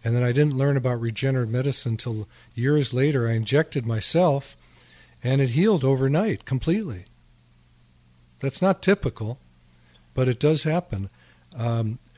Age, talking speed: 50-69, 135 wpm